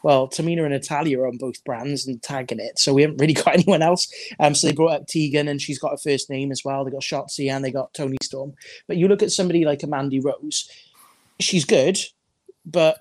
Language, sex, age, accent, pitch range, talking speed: English, male, 20-39, British, 135-160 Hz, 235 wpm